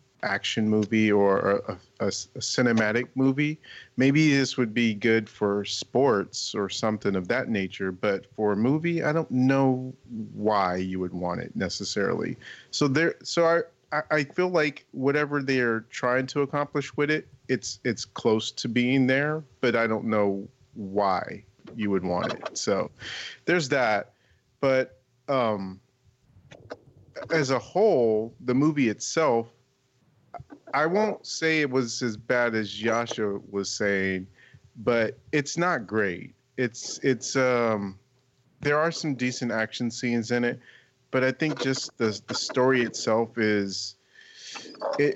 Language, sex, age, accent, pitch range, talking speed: English, male, 30-49, American, 110-135 Hz, 150 wpm